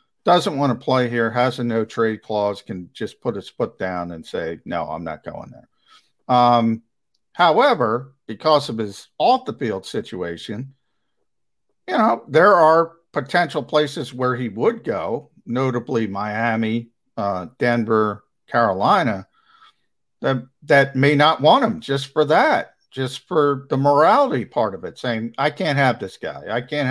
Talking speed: 160 wpm